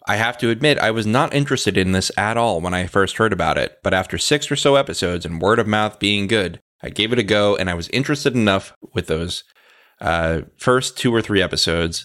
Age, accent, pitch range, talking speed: 30-49, American, 95-120 Hz, 240 wpm